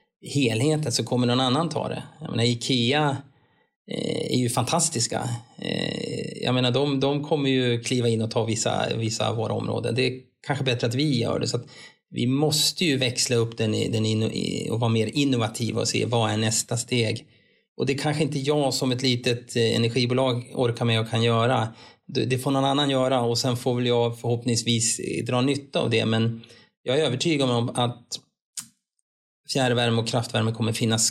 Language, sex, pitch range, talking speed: Swedish, male, 115-130 Hz, 190 wpm